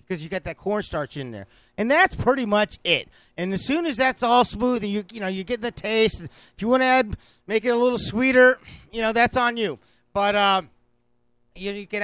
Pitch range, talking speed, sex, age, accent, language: 185-240 Hz, 240 wpm, male, 40-59, American, English